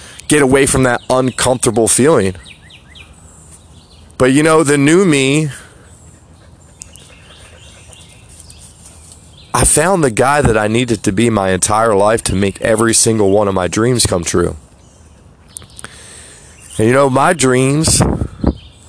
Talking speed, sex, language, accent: 125 wpm, male, English, American